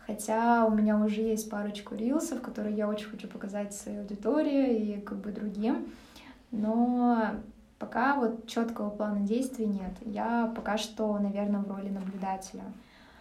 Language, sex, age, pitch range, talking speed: Russian, female, 20-39, 205-230 Hz, 145 wpm